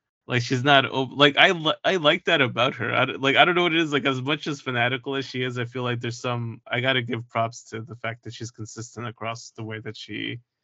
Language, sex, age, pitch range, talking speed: English, male, 20-39, 115-130 Hz, 260 wpm